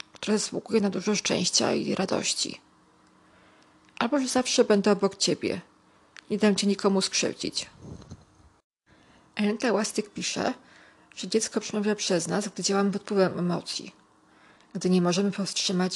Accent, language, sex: native, Polish, female